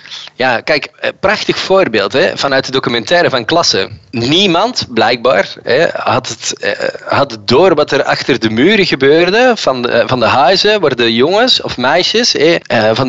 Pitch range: 125-180 Hz